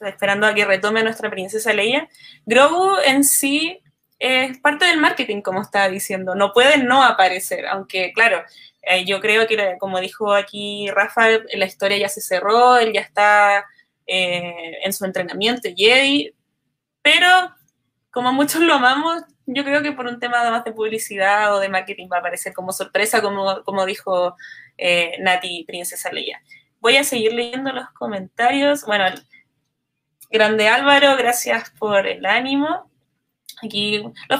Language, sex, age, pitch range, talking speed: Spanish, female, 20-39, 195-250 Hz, 155 wpm